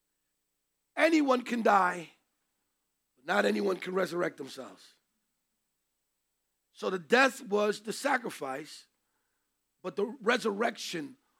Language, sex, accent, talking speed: English, male, American, 95 wpm